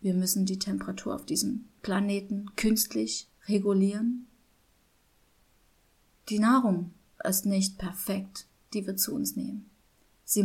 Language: German